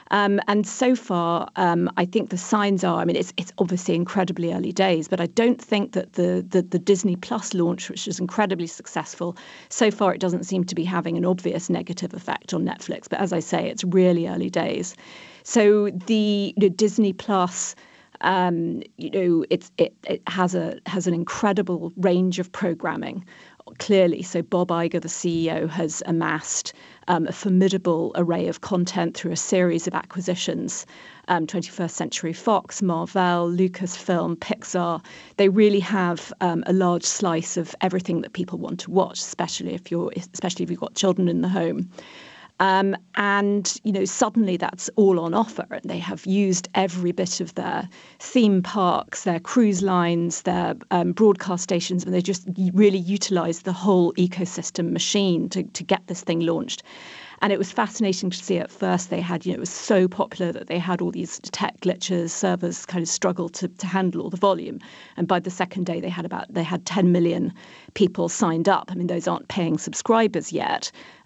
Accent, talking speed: British, 185 wpm